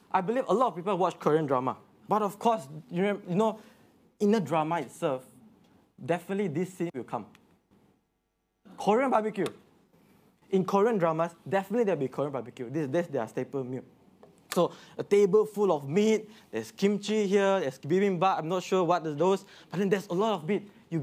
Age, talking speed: 20-39, 180 wpm